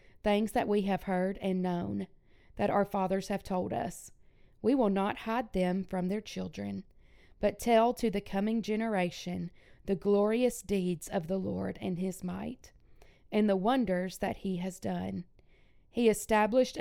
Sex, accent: female, American